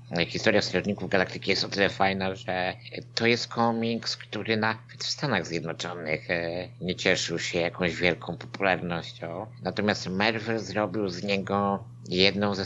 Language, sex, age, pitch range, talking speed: Polish, male, 50-69, 90-110 Hz, 135 wpm